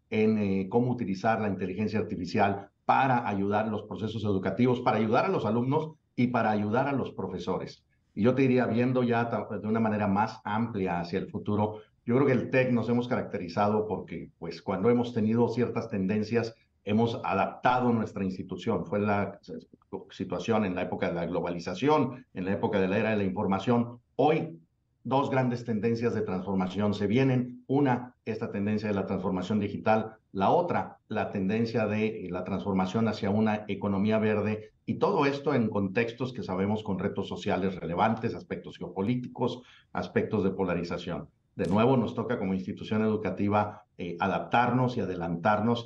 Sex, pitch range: male, 100-120 Hz